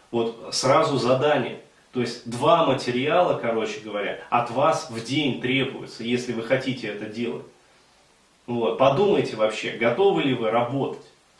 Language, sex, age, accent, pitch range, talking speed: Russian, male, 20-39, native, 115-135 Hz, 135 wpm